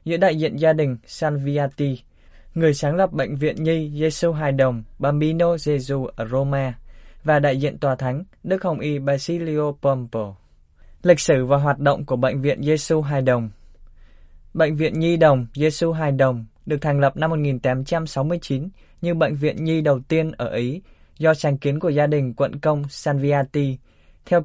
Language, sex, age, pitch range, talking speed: Vietnamese, male, 20-39, 130-160 Hz, 170 wpm